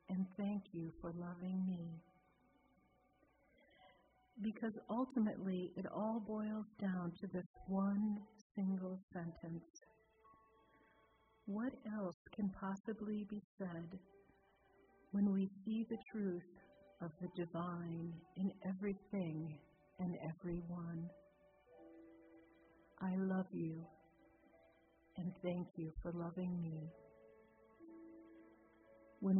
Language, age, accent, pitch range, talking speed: English, 50-69, American, 165-200 Hz, 90 wpm